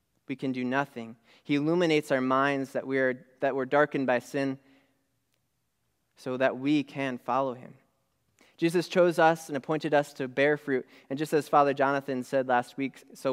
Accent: American